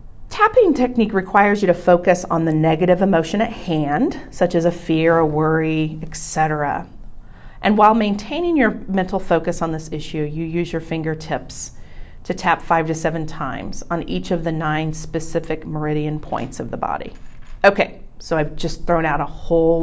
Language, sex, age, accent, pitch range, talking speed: English, female, 40-59, American, 150-175 Hz, 175 wpm